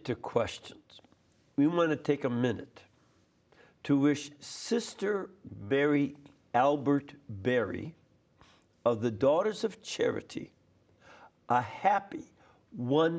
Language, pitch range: English, 140-190 Hz